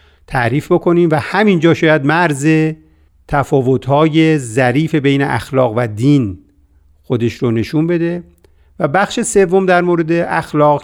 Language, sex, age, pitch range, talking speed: Persian, male, 50-69, 115-150 Hz, 125 wpm